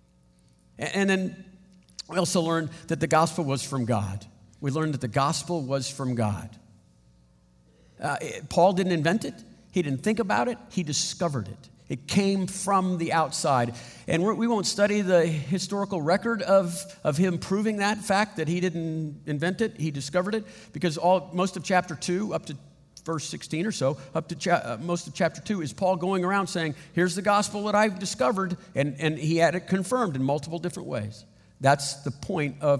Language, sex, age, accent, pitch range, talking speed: English, male, 50-69, American, 135-185 Hz, 190 wpm